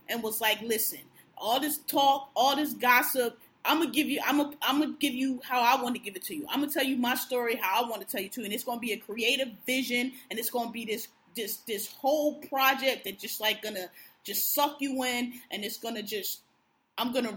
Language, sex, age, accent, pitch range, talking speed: English, female, 20-39, American, 225-295 Hz, 235 wpm